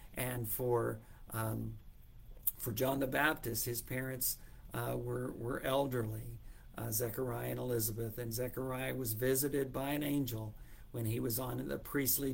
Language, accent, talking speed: English, American, 145 wpm